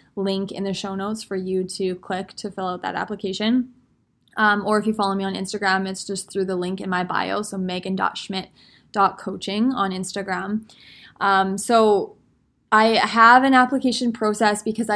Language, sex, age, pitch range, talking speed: English, female, 20-39, 190-215 Hz, 170 wpm